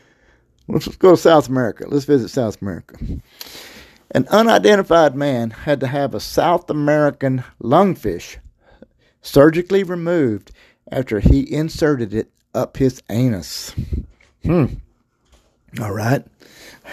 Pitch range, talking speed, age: 120-165 Hz, 110 wpm, 50-69